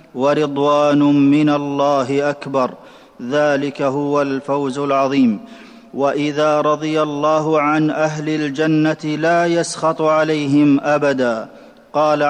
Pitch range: 145-155 Hz